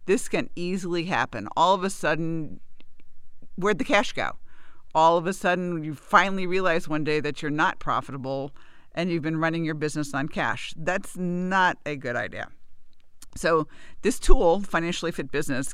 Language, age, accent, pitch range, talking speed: English, 50-69, American, 135-175 Hz, 170 wpm